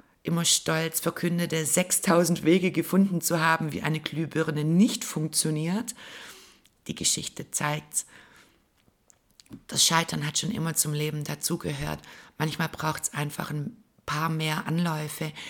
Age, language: 60-79, German